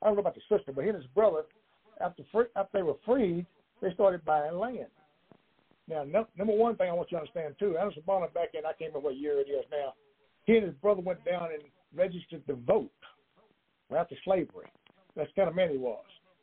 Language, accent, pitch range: English, American, 165-205 Hz